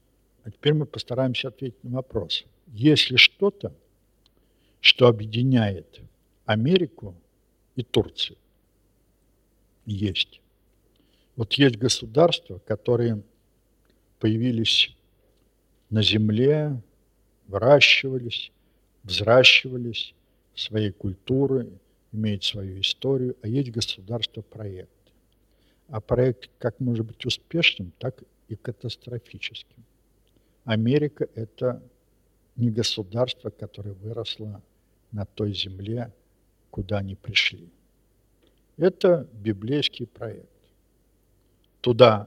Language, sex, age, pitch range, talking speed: Russian, male, 60-79, 100-125 Hz, 80 wpm